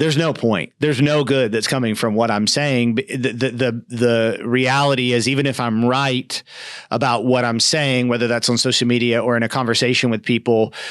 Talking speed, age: 205 wpm, 40-59